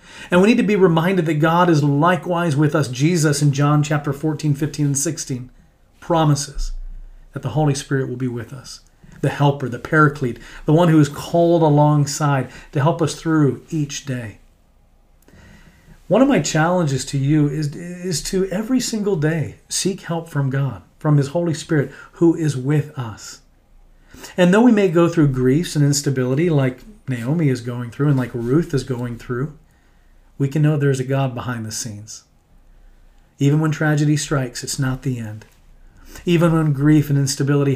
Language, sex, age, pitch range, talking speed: English, male, 40-59, 130-155 Hz, 175 wpm